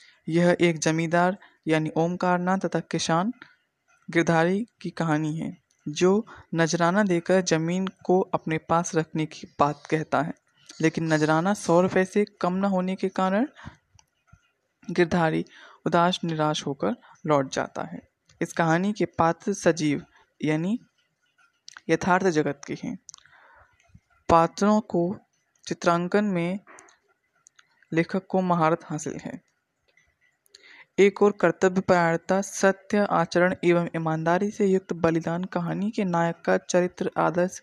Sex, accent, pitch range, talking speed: female, native, 165-195 Hz, 120 wpm